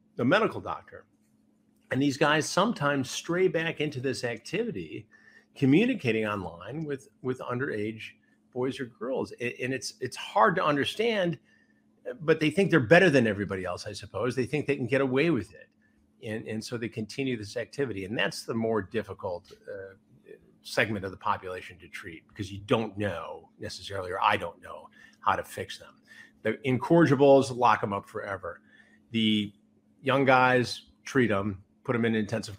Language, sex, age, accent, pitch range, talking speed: English, male, 50-69, American, 110-135 Hz, 170 wpm